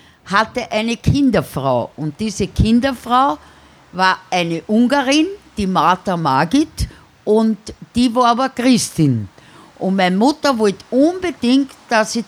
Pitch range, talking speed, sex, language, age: 170-235 Hz, 115 wpm, female, German, 60-79